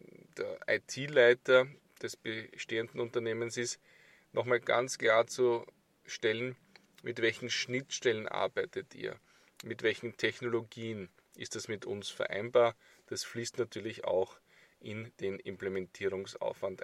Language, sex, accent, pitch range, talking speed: German, male, Austrian, 115-150 Hz, 110 wpm